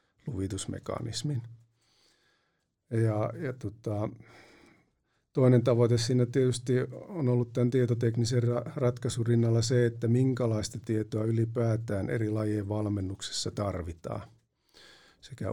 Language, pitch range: Finnish, 105-120 Hz